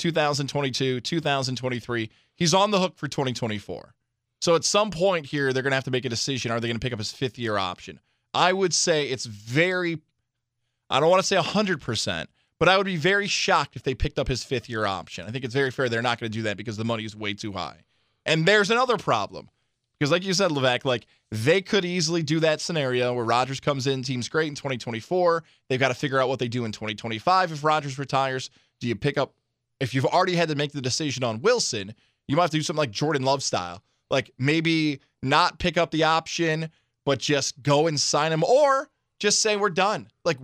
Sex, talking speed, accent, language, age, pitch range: male, 230 wpm, American, English, 20-39, 130-190 Hz